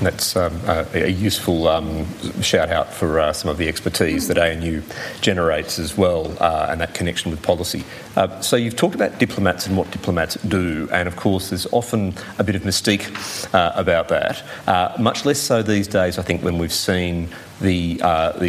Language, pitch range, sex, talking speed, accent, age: English, 85-100 Hz, male, 190 wpm, Australian, 40-59